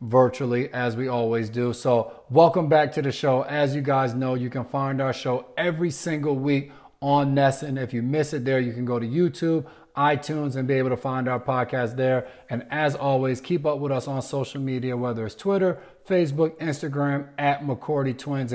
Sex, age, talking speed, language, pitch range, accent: male, 30-49, 205 wpm, English, 125-145 Hz, American